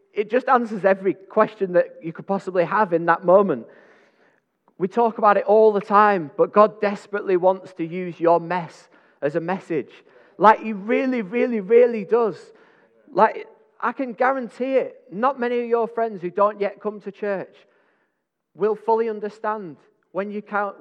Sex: male